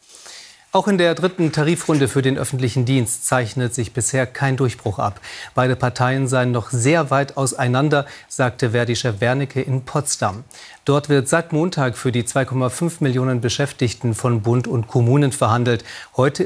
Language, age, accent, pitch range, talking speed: German, 40-59, German, 120-155 Hz, 155 wpm